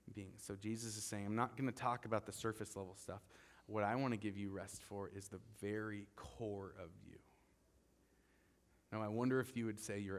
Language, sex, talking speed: English, male, 220 wpm